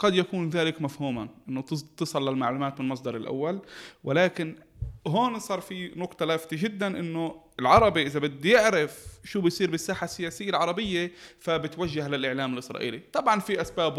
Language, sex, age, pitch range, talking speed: Arabic, male, 20-39, 135-165 Hz, 140 wpm